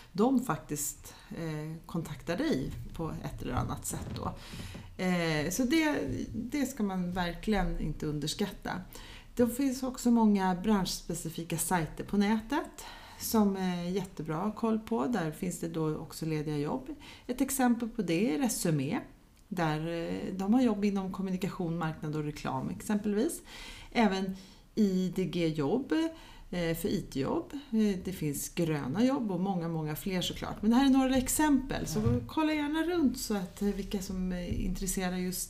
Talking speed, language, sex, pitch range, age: 140 wpm, Swedish, female, 165-235 Hz, 30-49